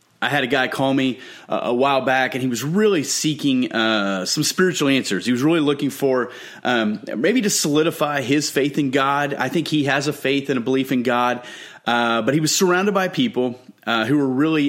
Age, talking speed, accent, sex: 30-49, 215 wpm, American, male